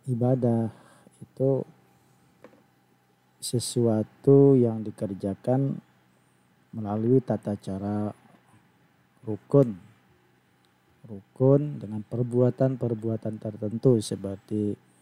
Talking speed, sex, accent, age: 55 wpm, male, native, 40-59